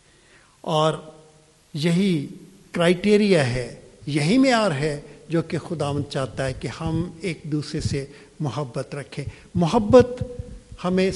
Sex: male